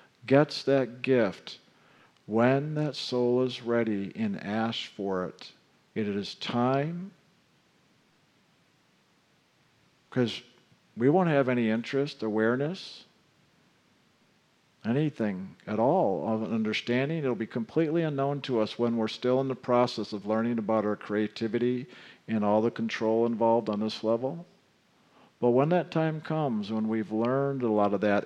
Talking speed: 140 wpm